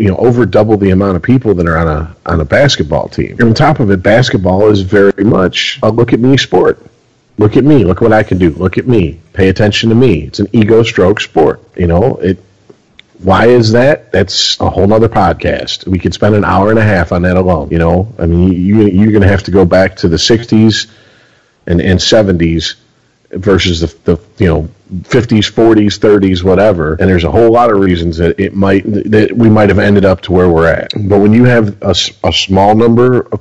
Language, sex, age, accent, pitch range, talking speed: English, male, 40-59, American, 85-110 Hz, 230 wpm